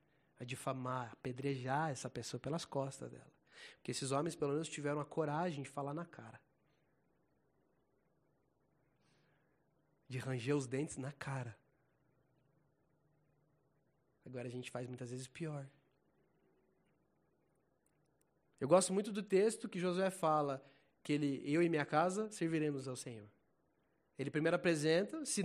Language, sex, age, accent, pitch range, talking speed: Portuguese, male, 20-39, Brazilian, 135-195 Hz, 130 wpm